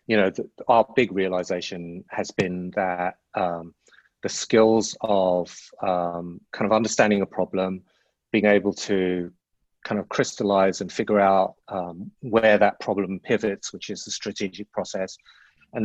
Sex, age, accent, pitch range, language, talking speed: male, 30-49, British, 95-110 Hz, English, 145 wpm